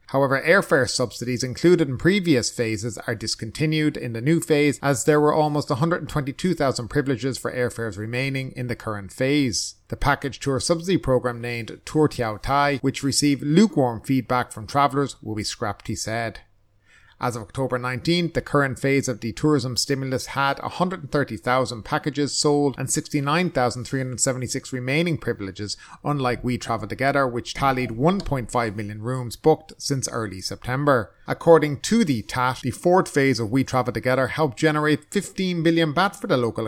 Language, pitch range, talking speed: English, 120-150 Hz, 160 wpm